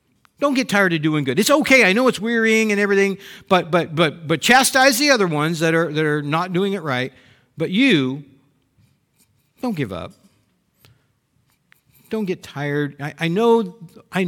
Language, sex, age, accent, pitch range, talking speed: English, male, 50-69, American, 130-200 Hz, 175 wpm